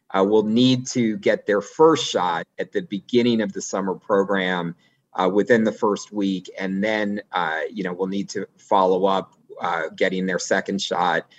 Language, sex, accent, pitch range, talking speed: English, male, American, 100-130 Hz, 185 wpm